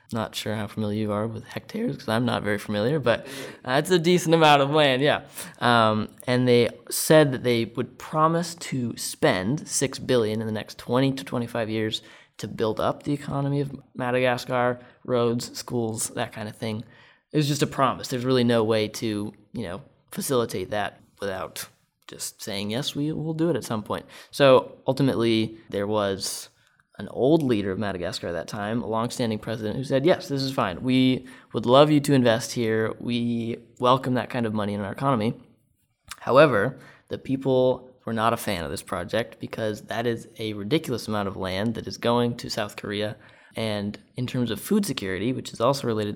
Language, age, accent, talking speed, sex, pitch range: English, 20-39, American, 195 wpm, male, 110-135 Hz